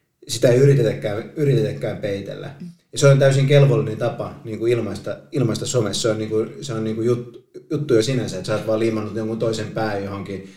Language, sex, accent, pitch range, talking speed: Finnish, male, native, 110-135 Hz, 175 wpm